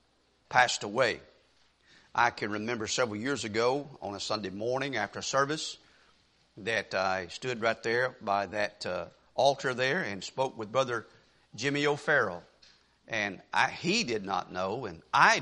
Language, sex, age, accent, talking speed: English, male, 50-69, American, 150 wpm